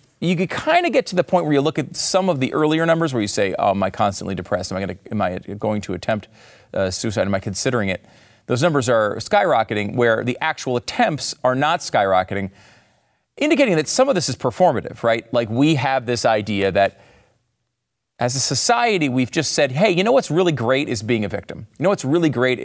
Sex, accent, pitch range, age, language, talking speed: male, American, 110-170 Hz, 40-59, English, 230 wpm